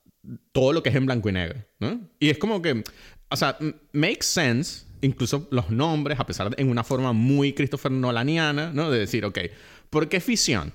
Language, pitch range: Spanish, 115-155 Hz